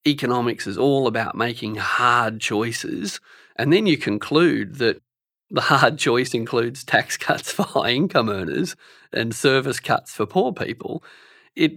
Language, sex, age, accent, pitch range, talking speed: English, male, 40-59, Australian, 110-135 Hz, 145 wpm